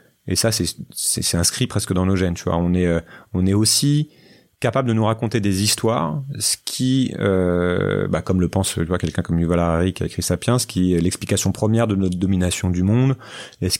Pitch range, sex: 90-115 Hz, male